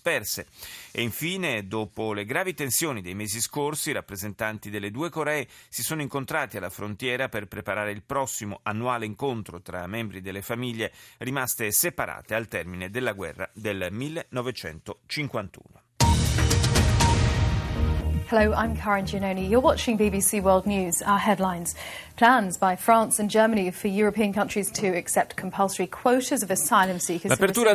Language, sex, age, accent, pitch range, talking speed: Italian, male, 40-59, native, 115-160 Hz, 80 wpm